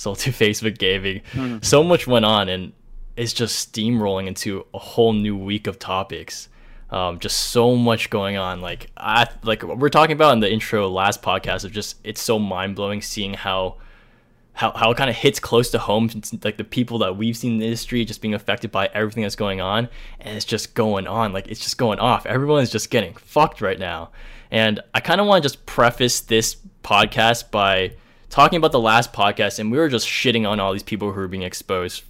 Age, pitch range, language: 20-39, 105-120 Hz, English